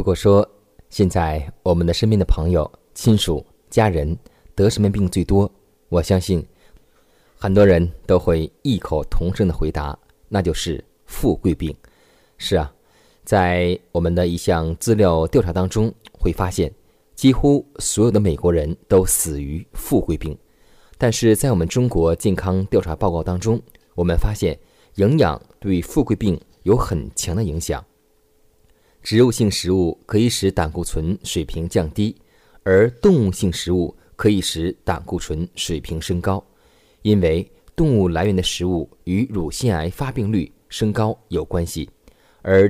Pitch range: 85-105 Hz